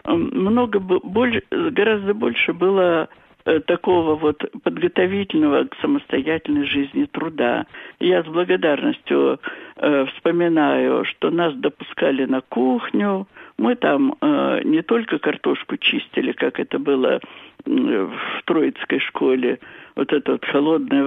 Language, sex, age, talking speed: Russian, male, 60-79, 105 wpm